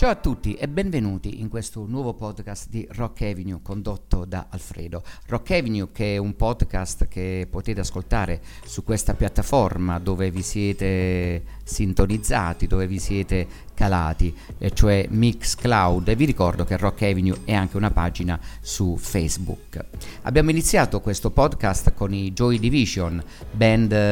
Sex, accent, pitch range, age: male, native, 90-110 Hz, 50-69